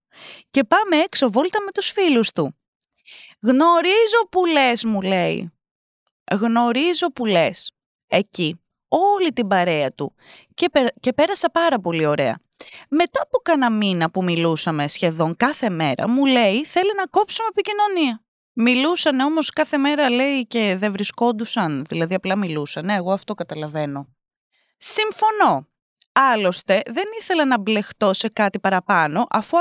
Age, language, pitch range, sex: 20-39, Greek, 185-310 Hz, female